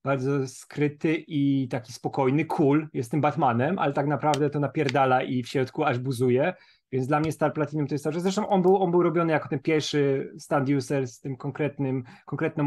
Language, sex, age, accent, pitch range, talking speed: Polish, male, 30-49, native, 135-155 Hz, 205 wpm